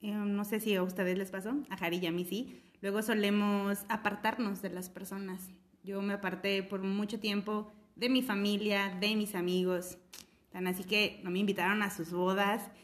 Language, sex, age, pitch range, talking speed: Spanish, female, 20-39, 195-240 Hz, 185 wpm